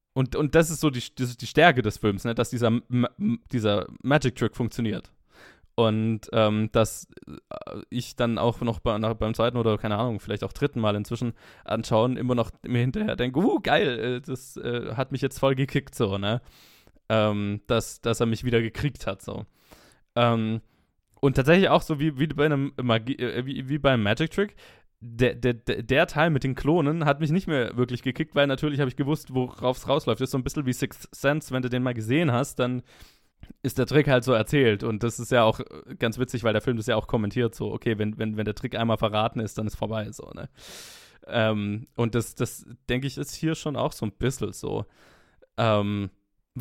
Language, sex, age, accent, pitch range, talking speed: German, male, 20-39, German, 110-140 Hz, 210 wpm